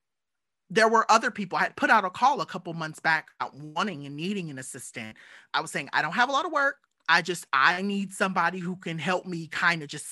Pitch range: 150-195 Hz